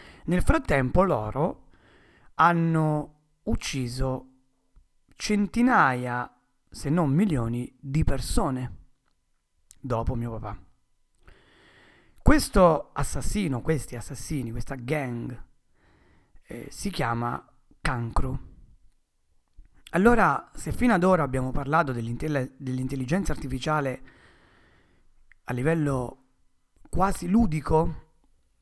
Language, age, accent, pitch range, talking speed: Italian, 40-59, native, 120-155 Hz, 80 wpm